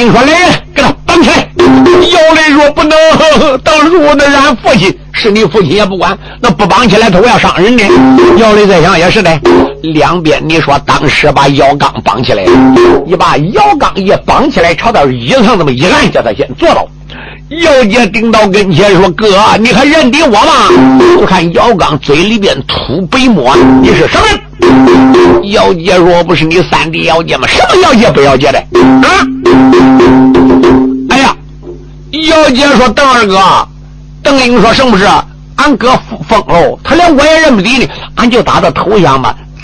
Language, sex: Chinese, male